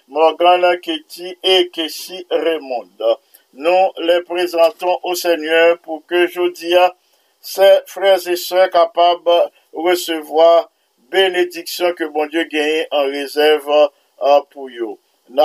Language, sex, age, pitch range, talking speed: English, male, 50-69, 155-180 Hz, 125 wpm